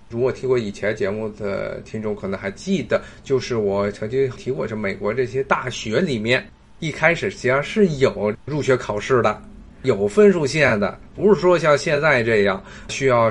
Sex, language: male, Chinese